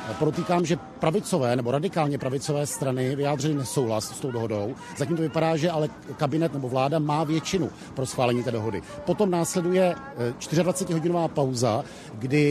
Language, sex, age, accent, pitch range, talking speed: Czech, male, 50-69, native, 135-165 Hz, 150 wpm